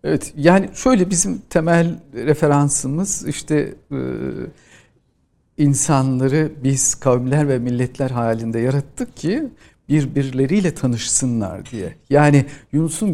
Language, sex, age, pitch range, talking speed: Turkish, male, 50-69, 125-170 Hz, 90 wpm